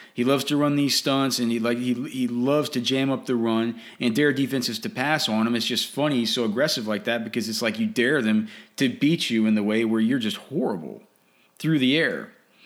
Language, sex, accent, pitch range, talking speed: English, male, American, 115-140 Hz, 240 wpm